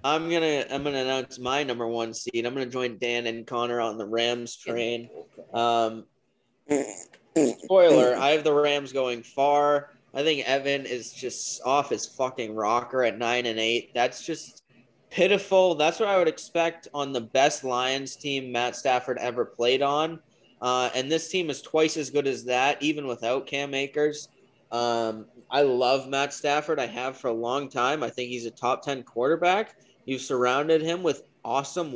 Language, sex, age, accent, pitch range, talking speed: English, male, 20-39, American, 125-160 Hz, 180 wpm